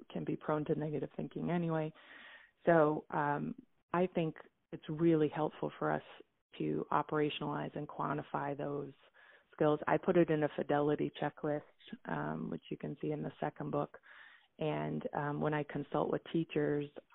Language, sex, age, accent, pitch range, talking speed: English, female, 20-39, American, 145-160 Hz, 155 wpm